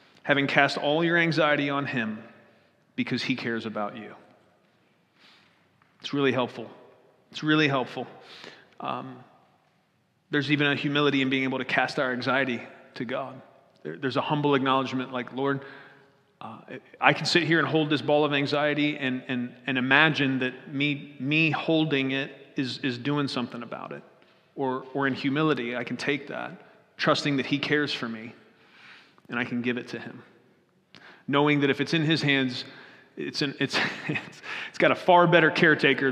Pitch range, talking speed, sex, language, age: 130-150 Hz, 170 wpm, male, English, 30-49